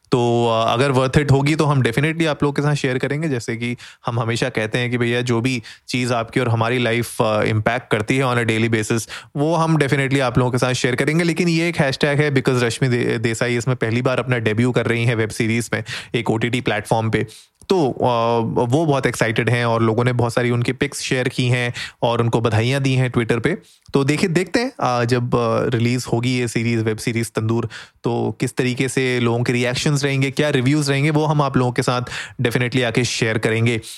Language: Hindi